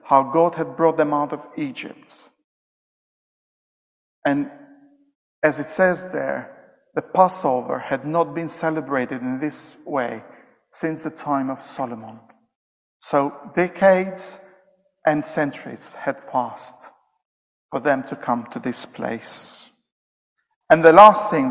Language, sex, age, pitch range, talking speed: English, male, 50-69, 150-235 Hz, 125 wpm